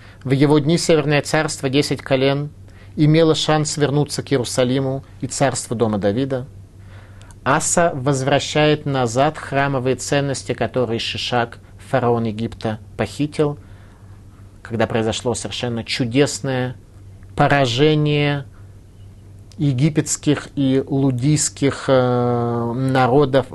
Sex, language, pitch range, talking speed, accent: male, Russian, 100-145 Hz, 90 wpm, native